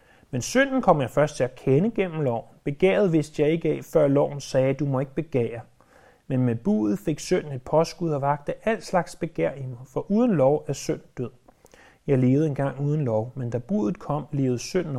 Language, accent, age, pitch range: Danish, native, 30-49, 130-175 Hz